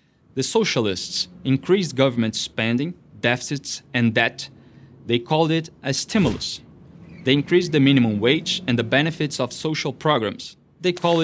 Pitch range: 120-160 Hz